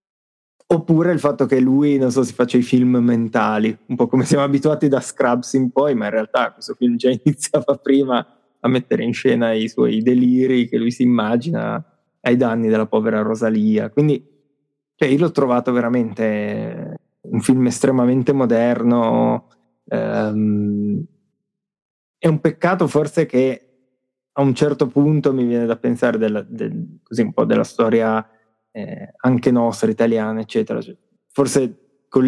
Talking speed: 155 wpm